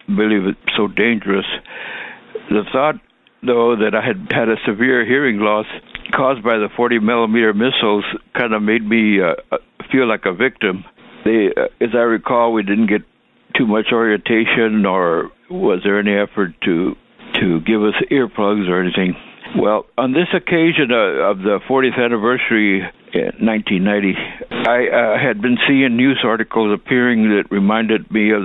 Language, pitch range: English, 100-115 Hz